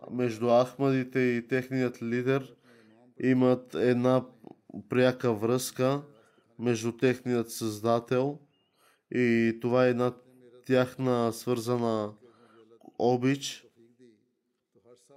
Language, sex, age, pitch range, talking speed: Bulgarian, male, 20-39, 115-130 Hz, 75 wpm